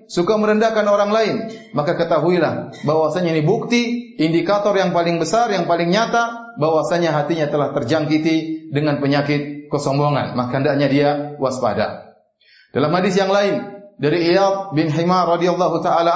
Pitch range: 155-195 Hz